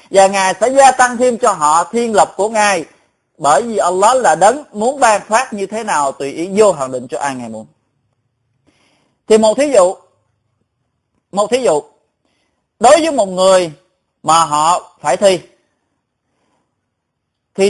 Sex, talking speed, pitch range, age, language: male, 165 wpm, 160-225 Hz, 20-39, Vietnamese